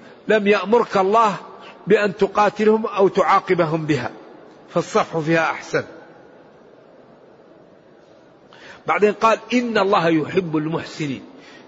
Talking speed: 85 wpm